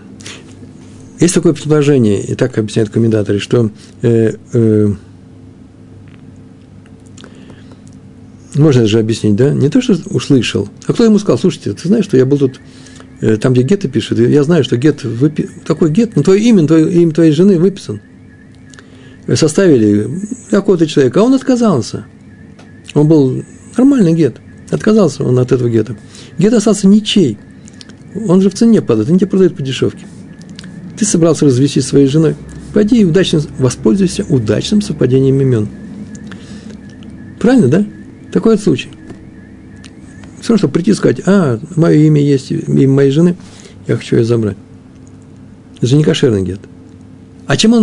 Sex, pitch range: male, 115-180 Hz